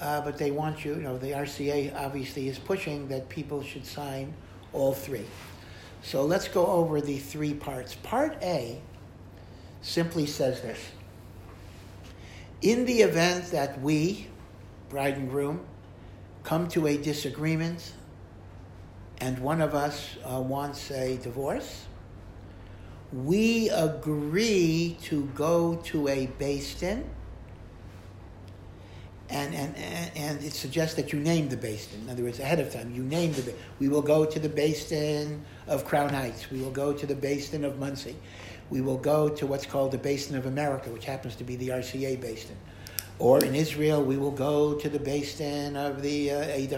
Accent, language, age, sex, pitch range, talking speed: American, English, 60-79, male, 105-150 Hz, 160 wpm